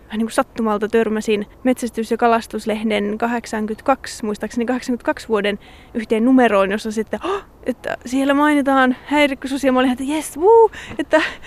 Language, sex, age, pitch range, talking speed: Finnish, female, 20-39, 215-250 Hz, 130 wpm